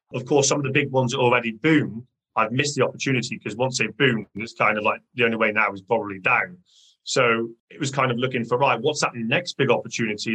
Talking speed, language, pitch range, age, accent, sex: 240 wpm, English, 120-145 Hz, 30-49, British, male